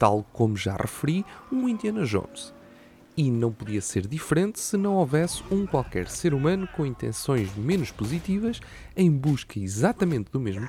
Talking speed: 155 wpm